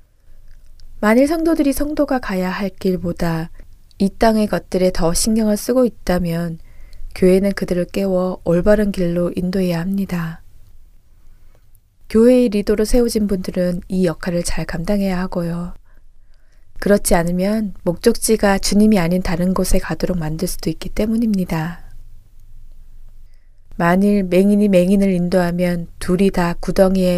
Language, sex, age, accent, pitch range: Korean, female, 20-39, native, 160-205 Hz